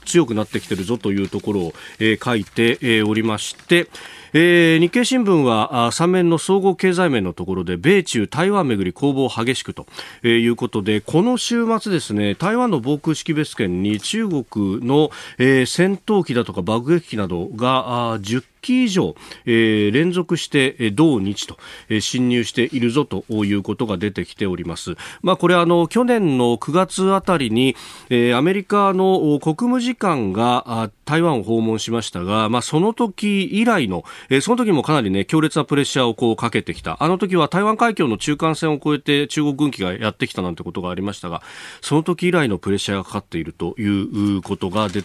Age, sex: 40-59, male